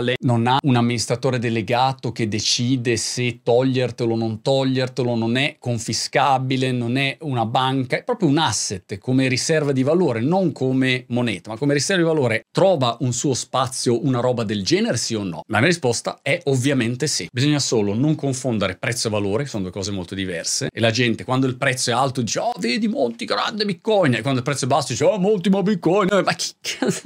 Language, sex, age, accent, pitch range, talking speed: Italian, male, 40-59, native, 115-155 Hz, 205 wpm